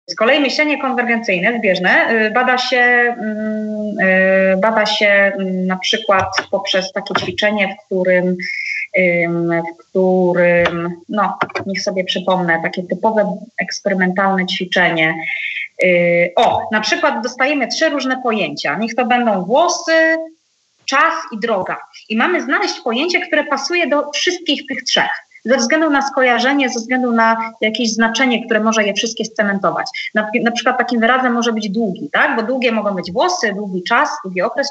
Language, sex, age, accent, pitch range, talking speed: Polish, female, 20-39, native, 200-265 Hz, 140 wpm